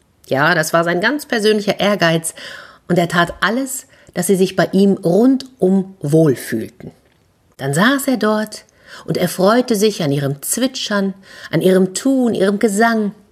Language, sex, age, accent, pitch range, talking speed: German, female, 50-69, German, 165-215 Hz, 160 wpm